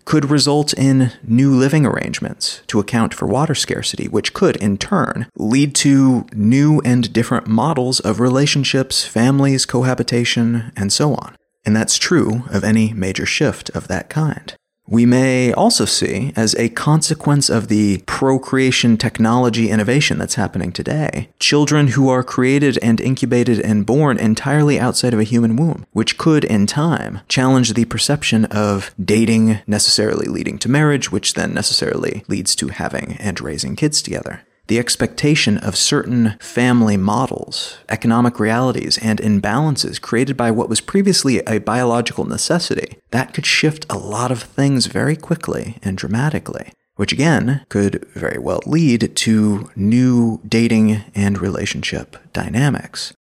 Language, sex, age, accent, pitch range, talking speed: English, male, 30-49, American, 110-135 Hz, 150 wpm